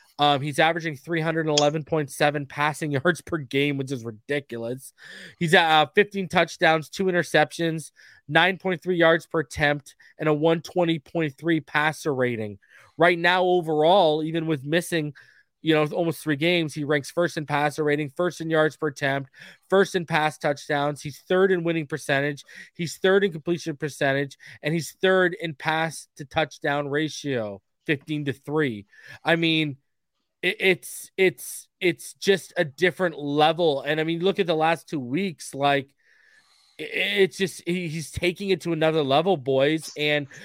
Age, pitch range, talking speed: 20-39, 150-175 Hz, 150 wpm